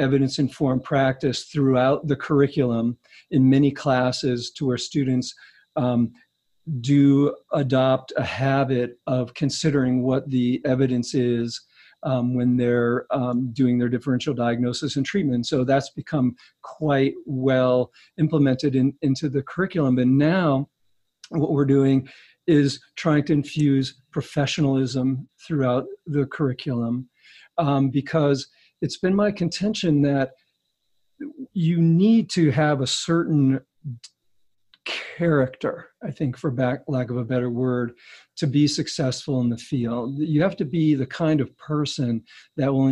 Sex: male